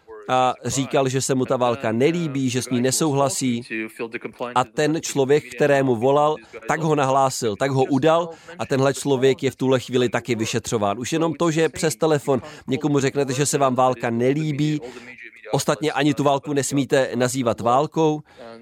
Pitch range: 125-150 Hz